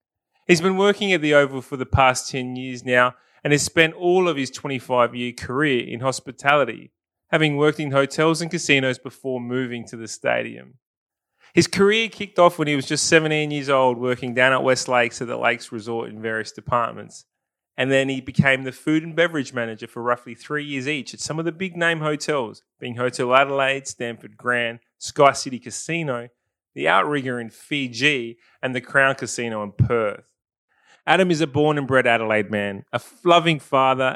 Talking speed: 185 wpm